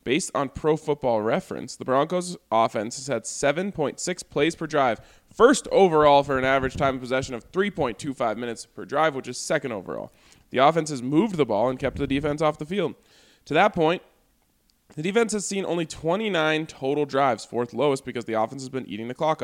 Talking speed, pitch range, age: 200 wpm, 120-150 Hz, 20-39